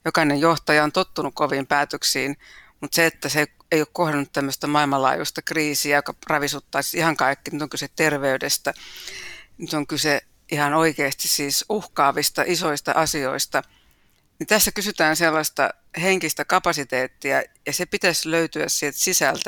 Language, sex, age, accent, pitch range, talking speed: Finnish, female, 60-79, native, 140-165 Hz, 140 wpm